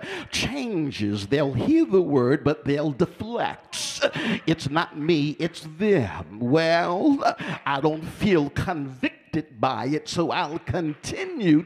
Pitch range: 155-230 Hz